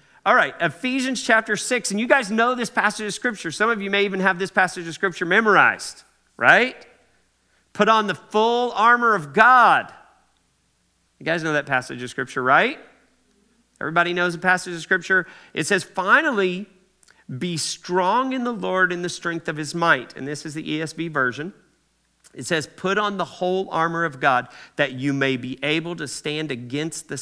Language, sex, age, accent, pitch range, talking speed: English, male, 40-59, American, 135-190 Hz, 185 wpm